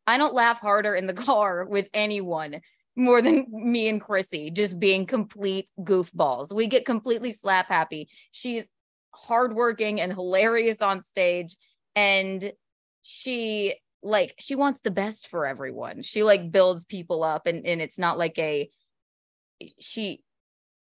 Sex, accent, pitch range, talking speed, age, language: female, American, 180-235 Hz, 145 wpm, 20-39, English